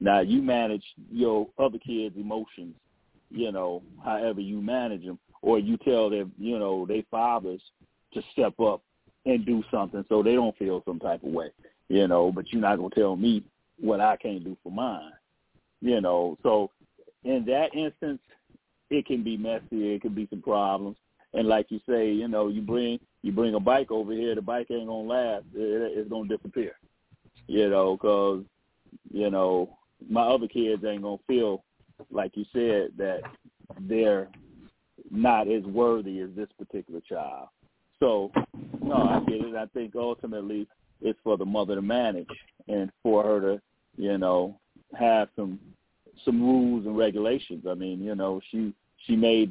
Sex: male